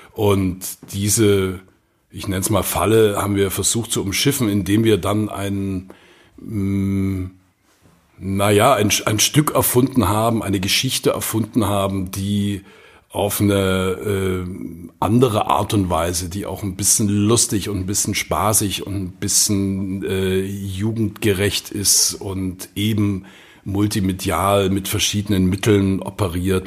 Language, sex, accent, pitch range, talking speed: German, male, German, 95-105 Hz, 125 wpm